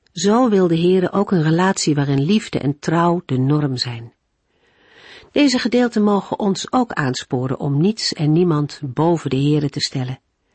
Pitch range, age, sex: 140-205 Hz, 50-69, female